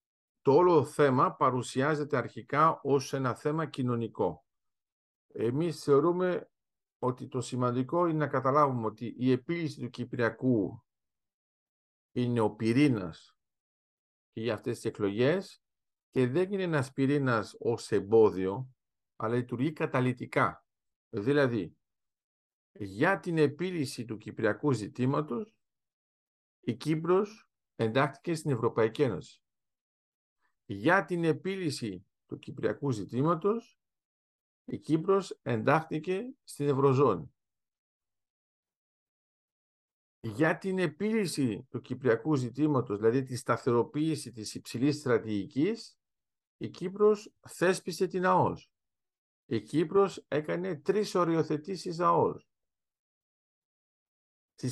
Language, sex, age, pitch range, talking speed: Greek, male, 50-69, 120-165 Hz, 95 wpm